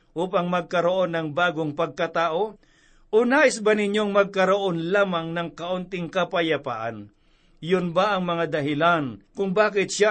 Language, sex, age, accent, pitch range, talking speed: Filipino, male, 60-79, native, 160-195 Hz, 130 wpm